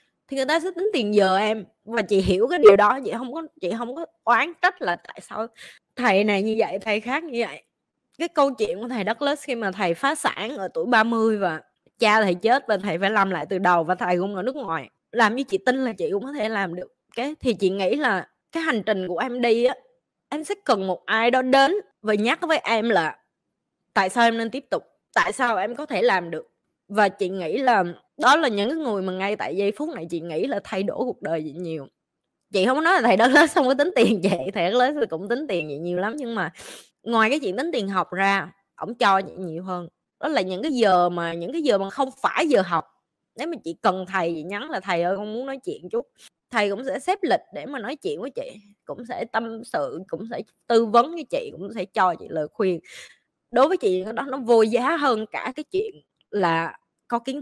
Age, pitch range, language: 20-39, 190-275 Hz, Vietnamese